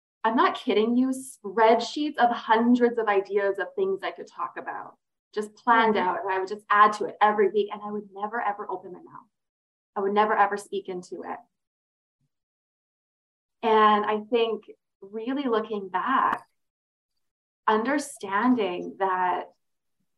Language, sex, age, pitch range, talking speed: English, female, 20-39, 185-230 Hz, 150 wpm